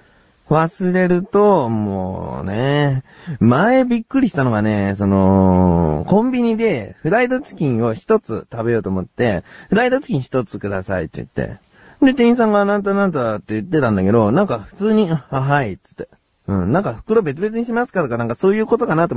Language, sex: Japanese, male